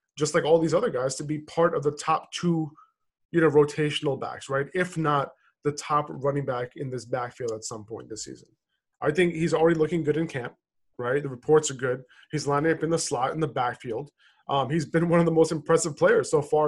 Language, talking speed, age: English, 235 wpm, 20-39